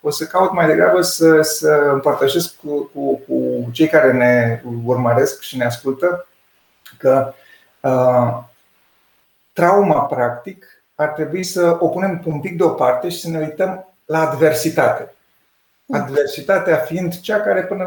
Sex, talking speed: male, 130 wpm